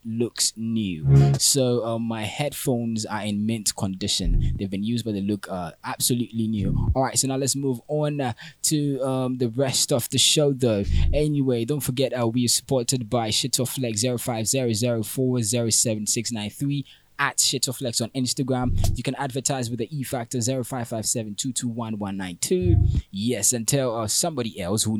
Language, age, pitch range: English, 20-39, 110-140 Hz